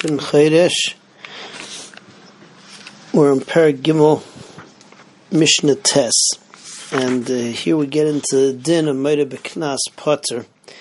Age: 40-59